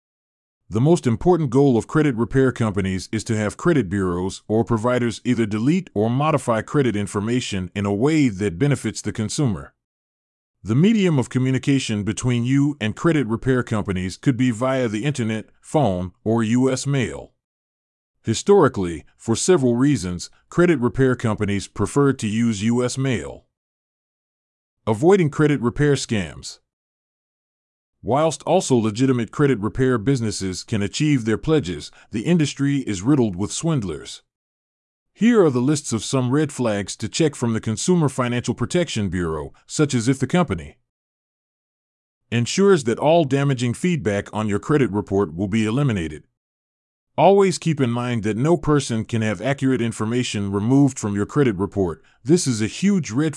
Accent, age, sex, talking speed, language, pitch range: American, 30-49, male, 150 wpm, English, 105-140 Hz